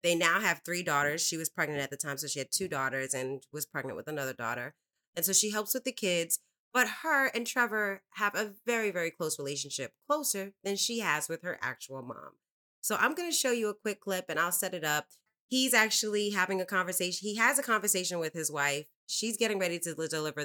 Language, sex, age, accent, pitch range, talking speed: English, female, 30-49, American, 150-200 Hz, 230 wpm